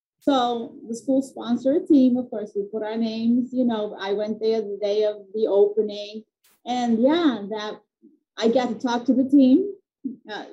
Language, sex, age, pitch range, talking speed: English, female, 30-49, 200-245 Hz, 190 wpm